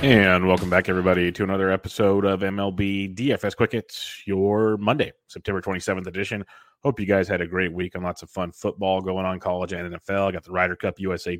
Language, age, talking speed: English, 30-49, 205 wpm